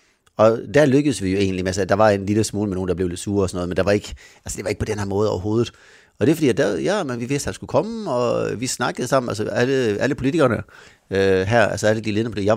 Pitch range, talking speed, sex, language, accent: 105-130 Hz, 300 wpm, male, Danish, native